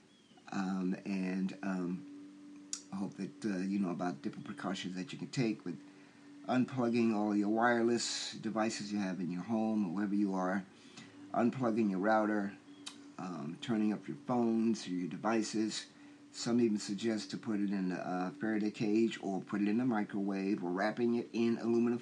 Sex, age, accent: male, 50-69, American